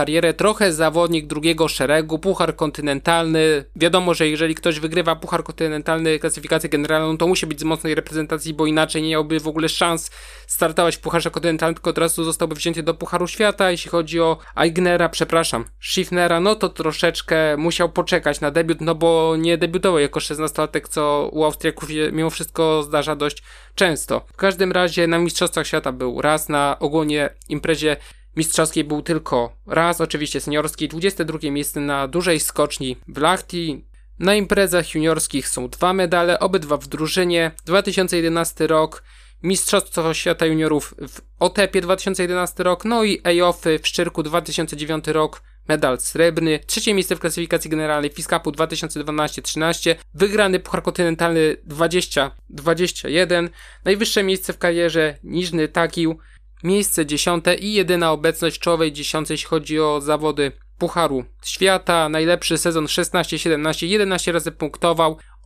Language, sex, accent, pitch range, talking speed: Polish, male, native, 155-175 Hz, 140 wpm